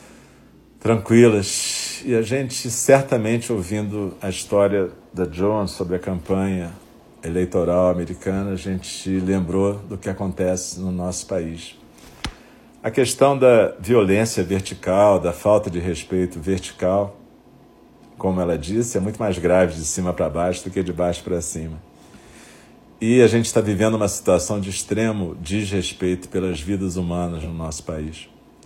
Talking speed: 140 wpm